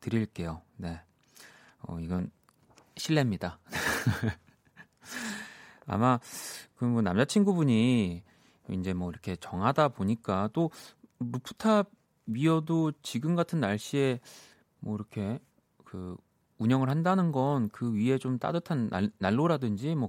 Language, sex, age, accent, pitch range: Korean, male, 30-49, native, 95-140 Hz